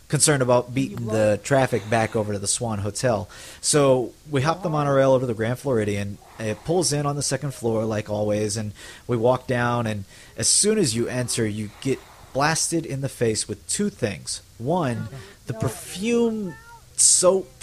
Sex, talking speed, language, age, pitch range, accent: male, 180 wpm, English, 30-49, 110-145 Hz, American